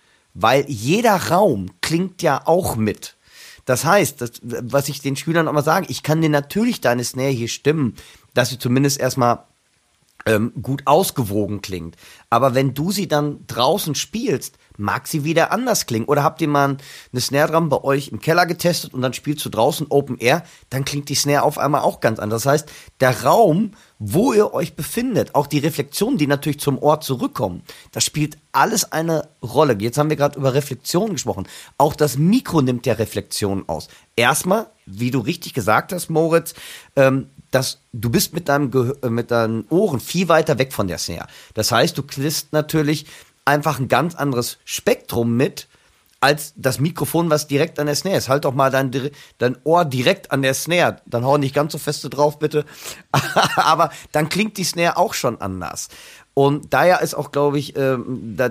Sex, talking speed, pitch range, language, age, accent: male, 190 wpm, 125-160 Hz, German, 30-49, German